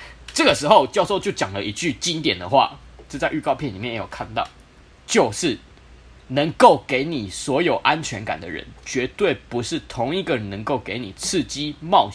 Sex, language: male, Chinese